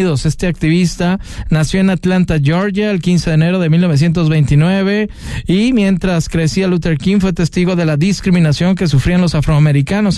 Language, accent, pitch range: Spanish, Mexican, 155-190 Hz